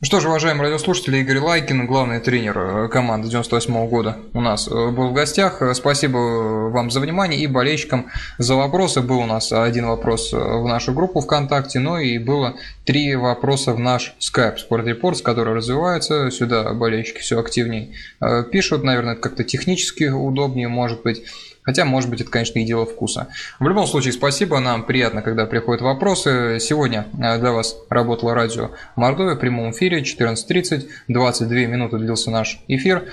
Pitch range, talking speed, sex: 115-140 Hz, 160 wpm, male